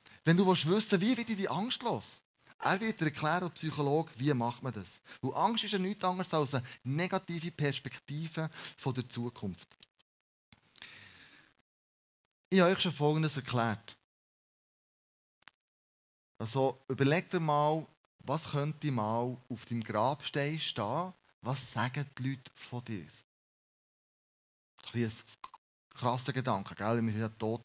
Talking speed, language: 135 wpm, German